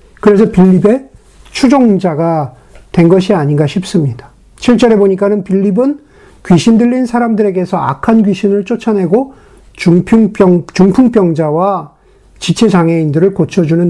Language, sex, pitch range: Korean, male, 180-235 Hz